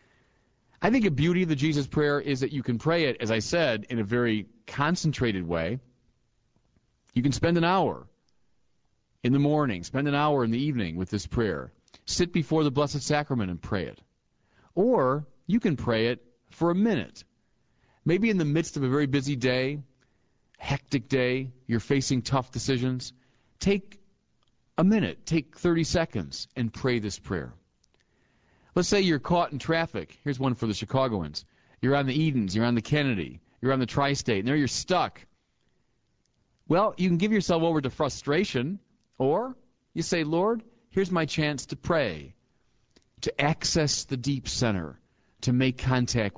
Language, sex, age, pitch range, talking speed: English, male, 40-59, 120-165 Hz, 170 wpm